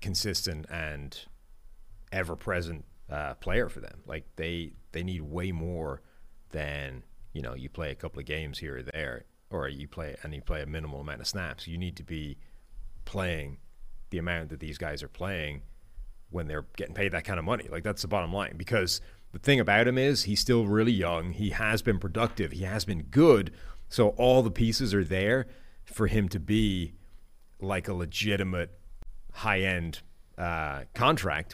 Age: 30-49